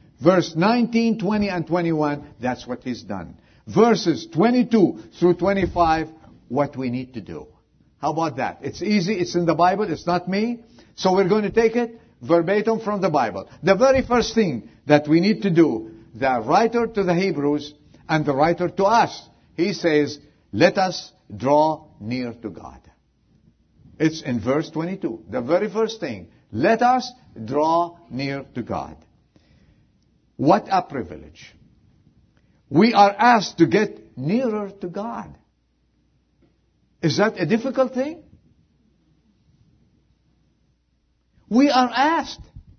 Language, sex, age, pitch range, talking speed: English, male, 50-69, 145-210 Hz, 140 wpm